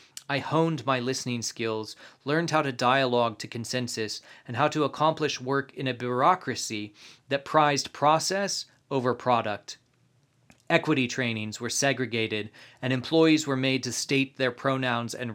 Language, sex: English, male